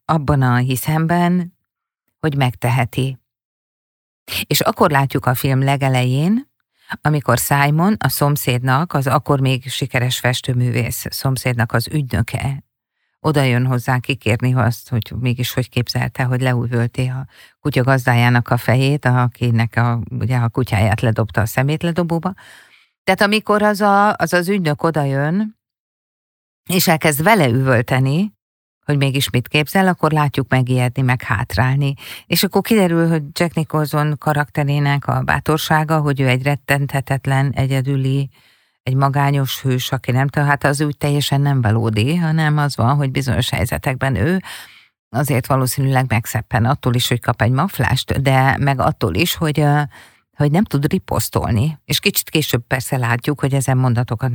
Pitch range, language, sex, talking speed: 125-150 Hz, Hungarian, female, 140 wpm